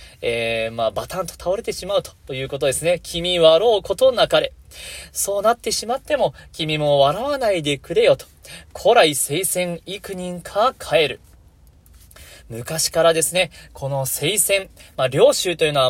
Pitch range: 150-220 Hz